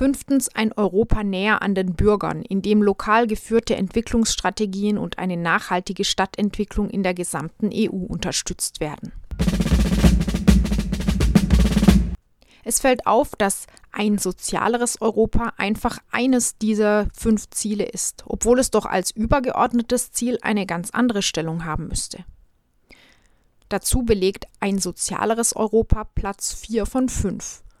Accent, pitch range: German, 195-230 Hz